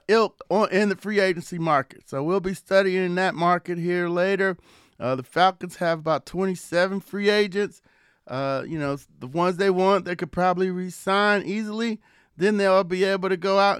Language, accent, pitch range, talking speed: English, American, 170-200 Hz, 180 wpm